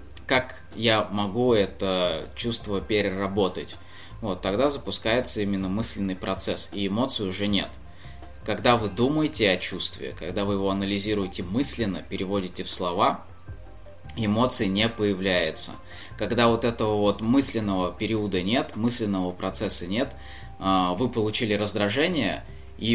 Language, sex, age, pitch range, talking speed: Russian, male, 20-39, 95-115 Hz, 120 wpm